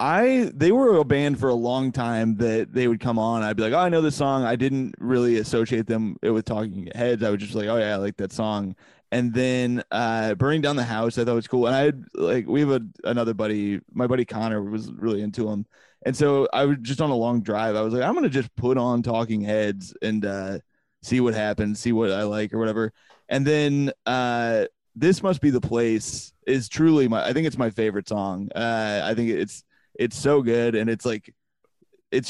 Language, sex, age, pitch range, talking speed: English, male, 20-39, 110-130 Hz, 235 wpm